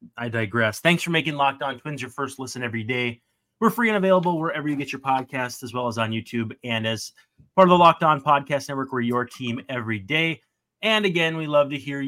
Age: 30-49